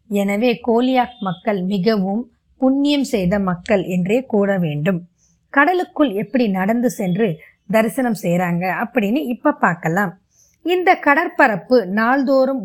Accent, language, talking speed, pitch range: native, Tamil, 105 wpm, 200-270 Hz